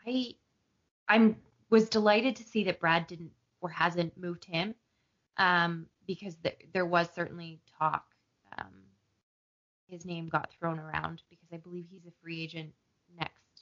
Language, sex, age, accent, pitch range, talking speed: English, female, 20-39, American, 160-195 Hz, 150 wpm